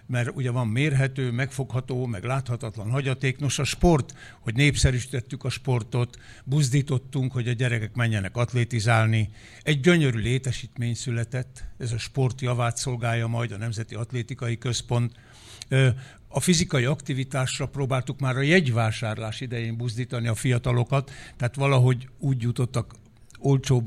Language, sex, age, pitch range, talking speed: Hungarian, male, 60-79, 115-140 Hz, 130 wpm